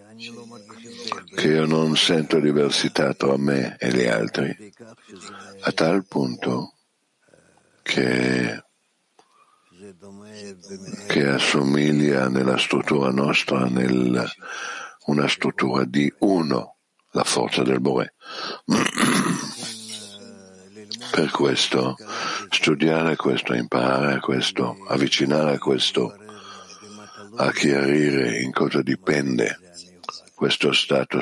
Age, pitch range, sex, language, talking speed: 60-79, 65-90 Hz, male, Italian, 85 wpm